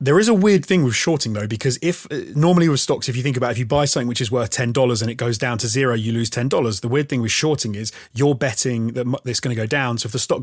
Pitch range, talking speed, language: 115-140 Hz, 300 wpm, English